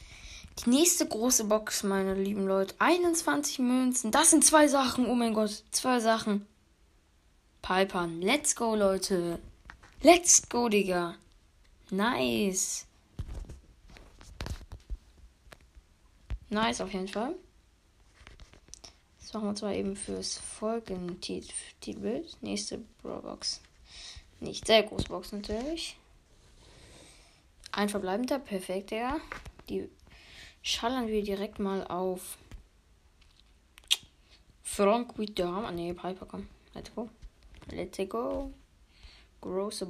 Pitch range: 170-230 Hz